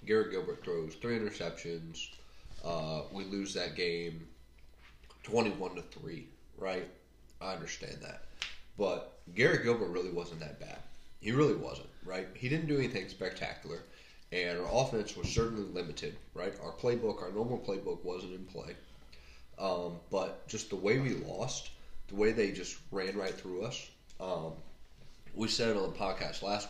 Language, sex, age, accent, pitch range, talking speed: English, male, 20-39, American, 80-125 Hz, 160 wpm